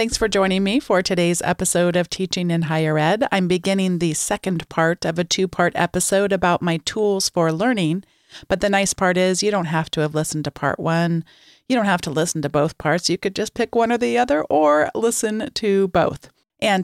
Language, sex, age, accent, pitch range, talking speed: English, female, 40-59, American, 160-205 Hz, 215 wpm